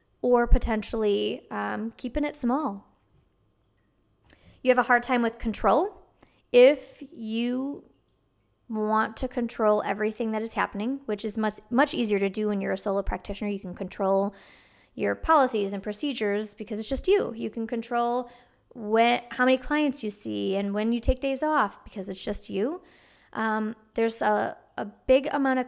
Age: 20-39